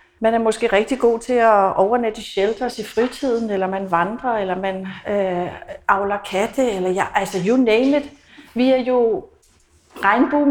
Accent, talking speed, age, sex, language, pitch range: native, 170 wpm, 40-59, female, Danish, 215-255 Hz